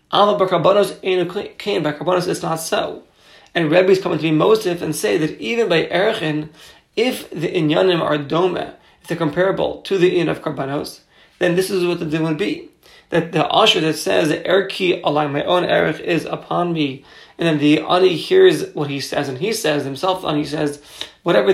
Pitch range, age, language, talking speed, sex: 150-190 Hz, 30-49, English, 190 wpm, male